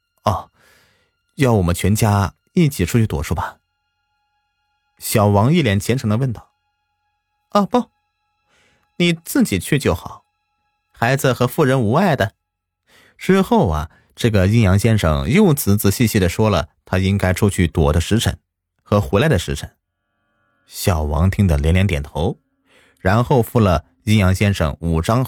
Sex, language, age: male, Chinese, 30-49